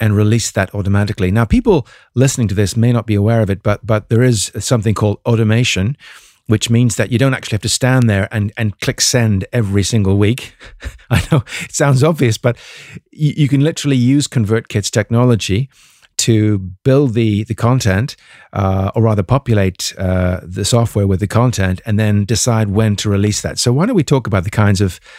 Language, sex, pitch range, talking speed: English, male, 100-120 Hz, 200 wpm